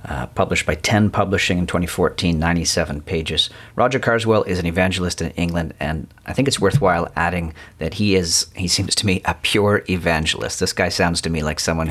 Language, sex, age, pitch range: English, male, 40-59, 85-105 Hz